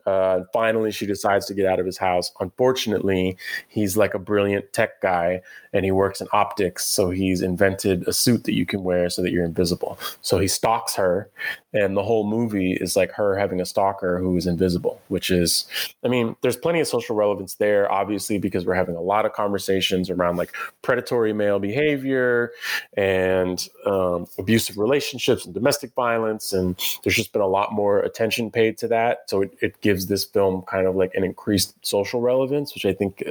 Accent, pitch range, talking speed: American, 95-115 Hz, 195 wpm